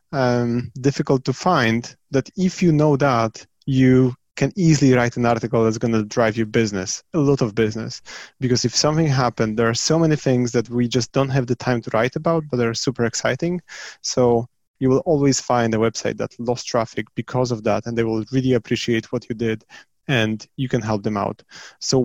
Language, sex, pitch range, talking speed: English, male, 115-135 Hz, 210 wpm